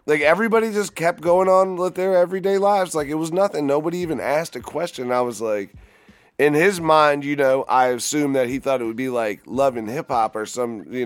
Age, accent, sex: 30-49, American, male